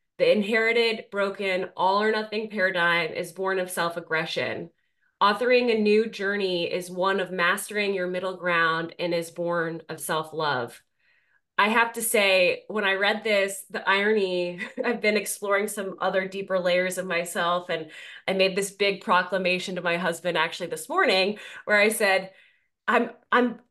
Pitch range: 190-245 Hz